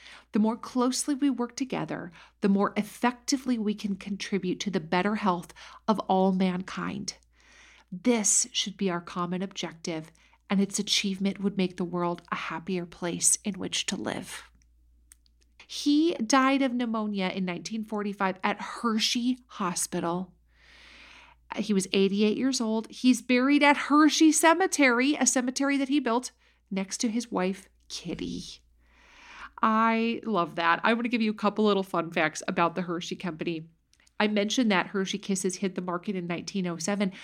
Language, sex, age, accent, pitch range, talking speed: English, female, 40-59, American, 185-265 Hz, 155 wpm